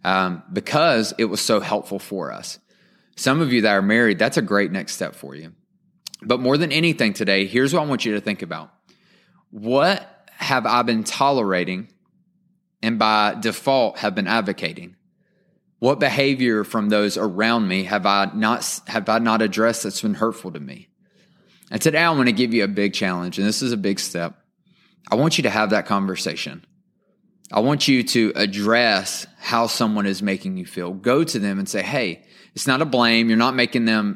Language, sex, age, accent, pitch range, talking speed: English, male, 20-39, American, 105-145 Hz, 195 wpm